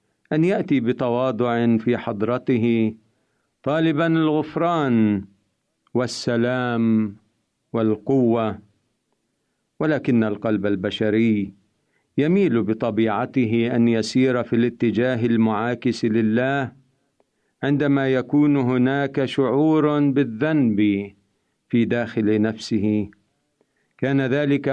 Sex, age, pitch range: male, 50-69, 110-140 Hz